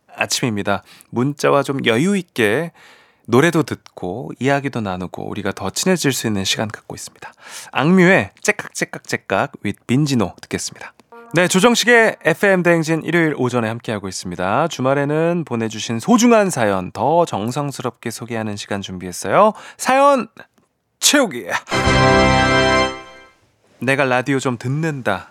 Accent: native